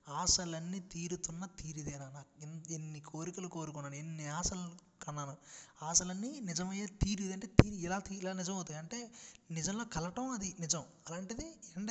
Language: Telugu